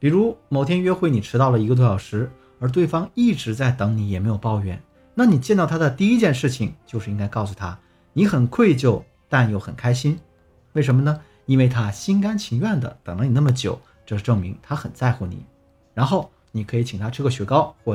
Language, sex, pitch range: Chinese, male, 105-160 Hz